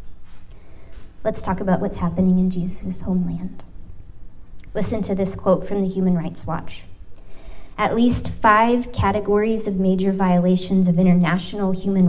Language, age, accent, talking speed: English, 20-39, American, 135 wpm